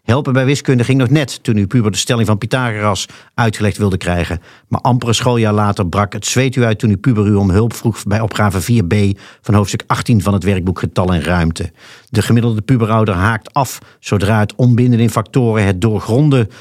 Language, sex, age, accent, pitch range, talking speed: Dutch, male, 50-69, Dutch, 105-130 Hz, 205 wpm